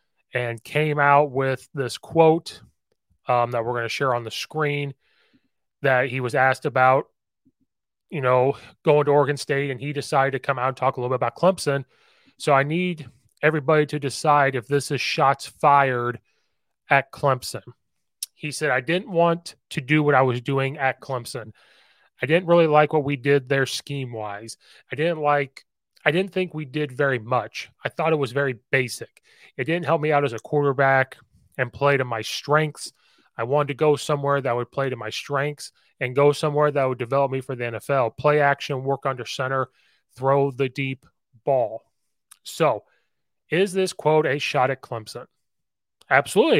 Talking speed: 185 wpm